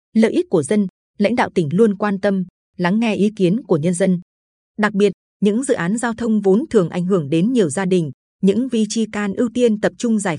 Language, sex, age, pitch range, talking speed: Vietnamese, female, 20-39, 180-225 Hz, 235 wpm